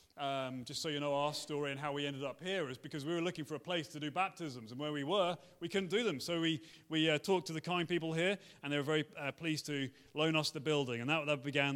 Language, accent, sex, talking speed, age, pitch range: English, British, male, 290 wpm, 30-49, 150-205 Hz